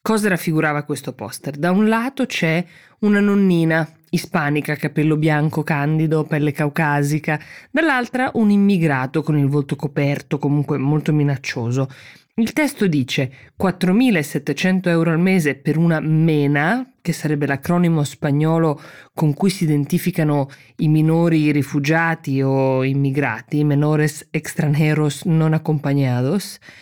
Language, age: Italian, 20-39